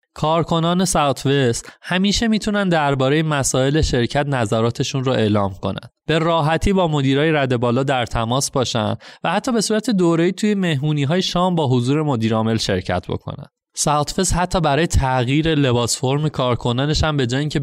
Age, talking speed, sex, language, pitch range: 20-39, 150 wpm, male, English, 120-170 Hz